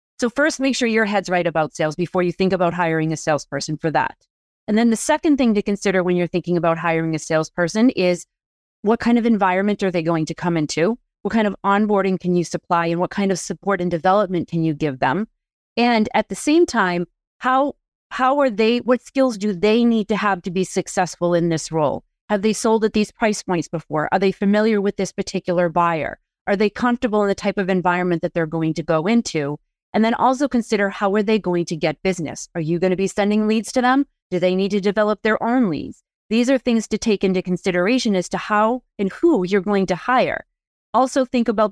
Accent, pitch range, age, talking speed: American, 175-220 Hz, 30-49, 230 wpm